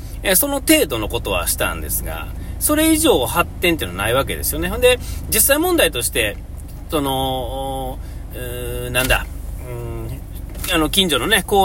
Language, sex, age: Japanese, male, 40-59